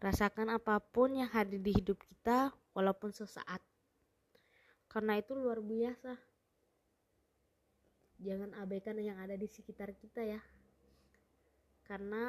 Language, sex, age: Indonesian, female, 20-39